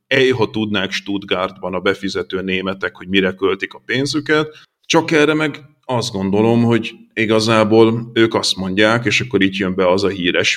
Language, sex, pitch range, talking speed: Hungarian, male, 95-120 Hz, 170 wpm